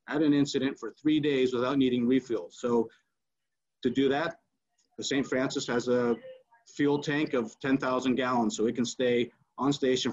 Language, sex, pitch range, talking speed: English, male, 125-150 Hz, 165 wpm